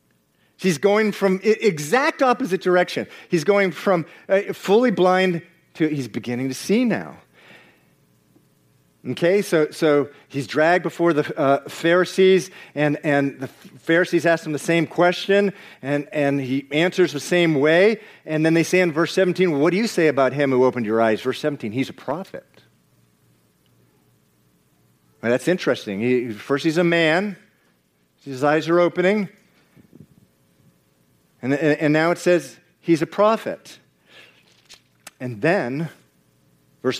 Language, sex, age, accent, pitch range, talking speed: English, male, 50-69, American, 120-170 Hz, 145 wpm